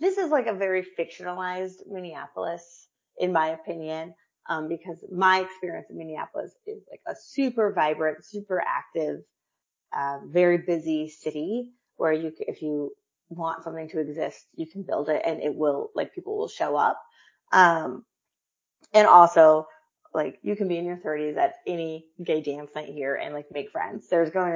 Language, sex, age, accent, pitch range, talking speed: English, female, 30-49, American, 155-205 Hz, 170 wpm